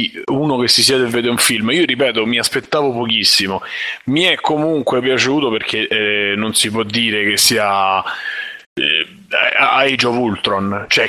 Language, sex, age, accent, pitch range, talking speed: Italian, male, 30-49, native, 105-130 Hz, 155 wpm